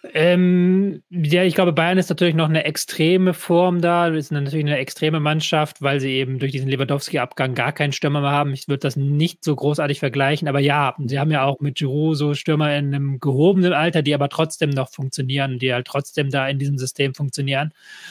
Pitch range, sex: 135-160 Hz, male